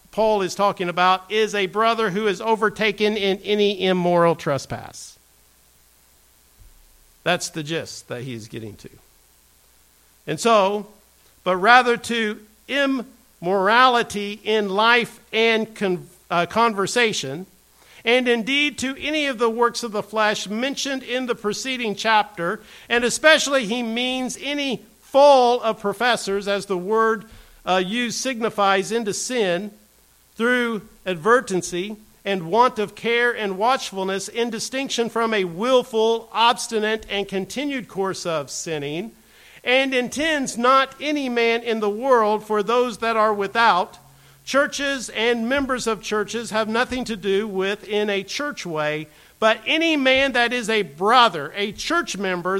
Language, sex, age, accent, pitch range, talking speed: English, male, 50-69, American, 190-245 Hz, 135 wpm